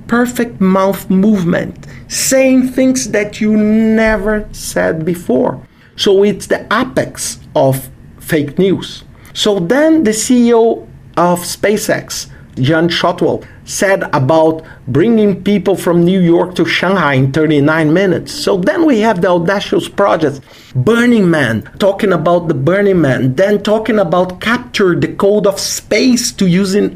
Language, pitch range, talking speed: English, 170-230 Hz, 135 wpm